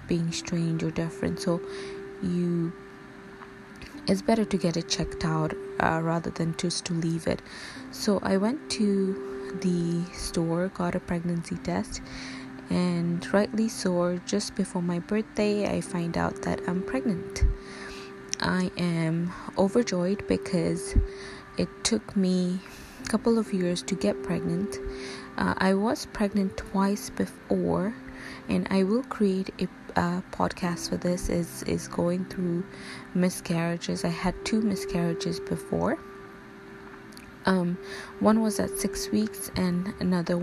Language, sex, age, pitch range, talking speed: English, female, 20-39, 170-200 Hz, 135 wpm